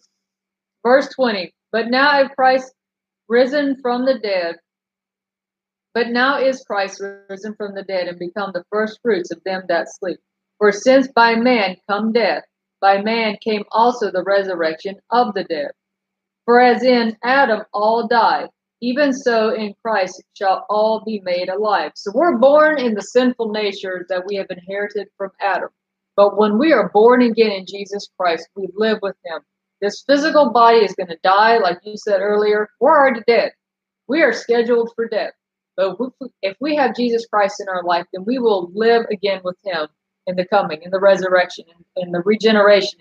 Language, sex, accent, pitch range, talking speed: English, female, American, 195-235 Hz, 180 wpm